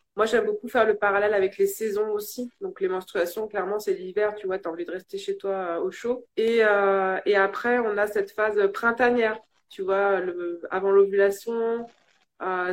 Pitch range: 190-245 Hz